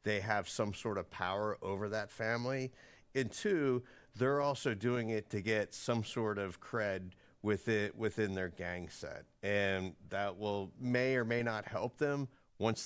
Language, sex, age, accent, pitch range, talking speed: English, male, 40-59, American, 105-135 Hz, 170 wpm